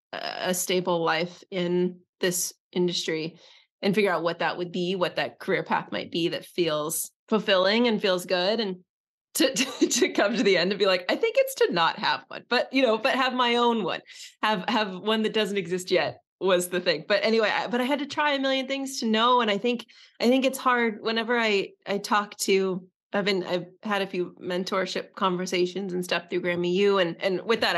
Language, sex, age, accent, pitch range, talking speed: English, female, 20-39, American, 180-225 Hz, 220 wpm